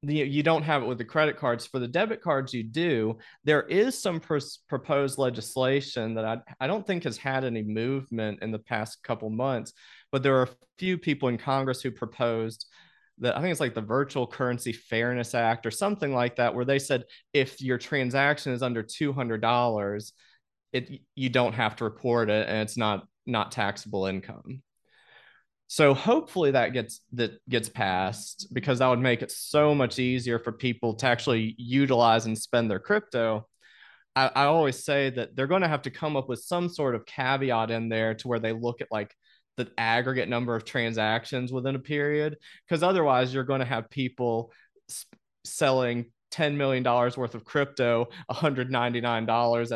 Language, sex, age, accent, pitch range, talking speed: English, male, 30-49, American, 115-140 Hz, 180 wpm